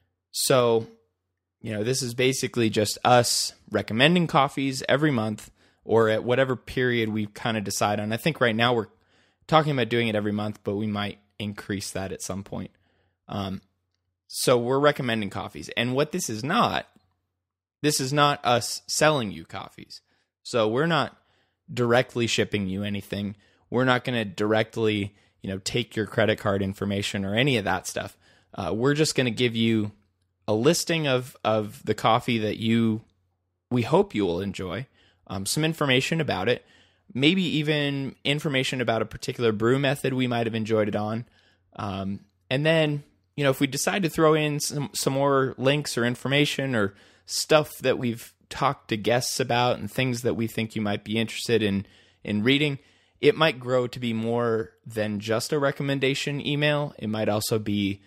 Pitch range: 100-130 Hz